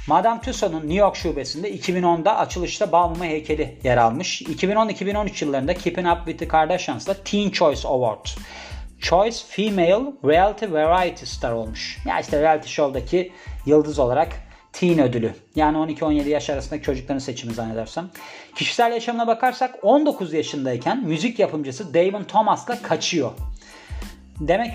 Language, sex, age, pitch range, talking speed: Turkish, male, 40-59, 145-210 Hz, 125 wpm